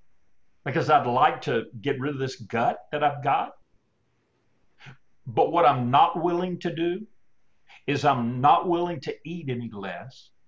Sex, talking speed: male, 155 wpm